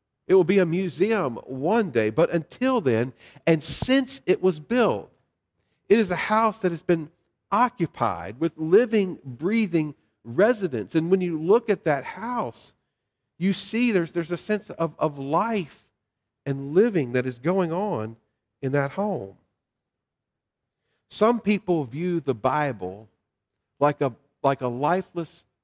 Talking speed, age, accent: 145 wpm, 50-69, American